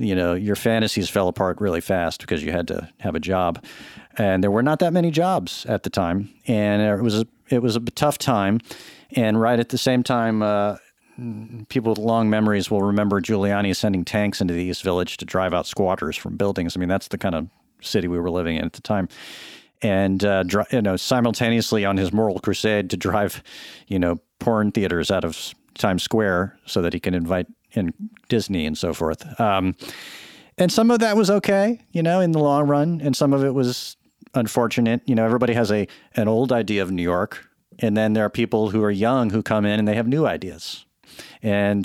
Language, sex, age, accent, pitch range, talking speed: English, male, 40-59, American, 100-125 Hz, 210 wpm